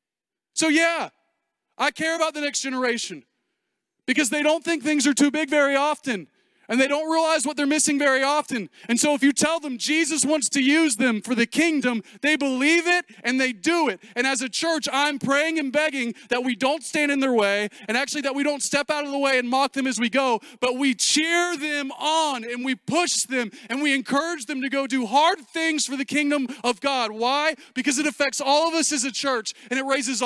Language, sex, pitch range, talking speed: English, male, 235-295 Hz, 230 wpm